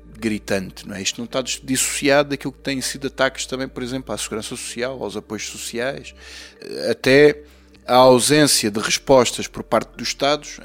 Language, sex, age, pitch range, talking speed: Portuguese, male, 20-39, 110-130 Hz, 170 wpm